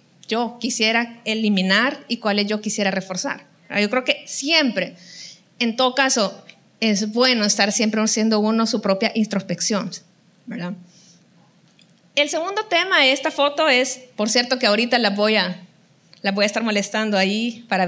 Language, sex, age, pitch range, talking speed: Spanish, female, 30-49, 190-235 Hz, 155 wpm